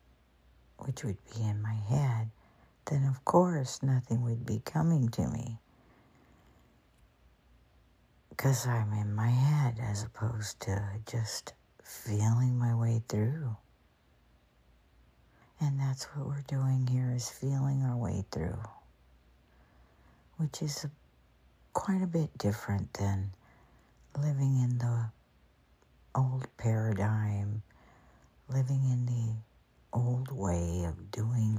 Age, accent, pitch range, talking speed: 60-79, American, 90-125 Hz, 110 wpm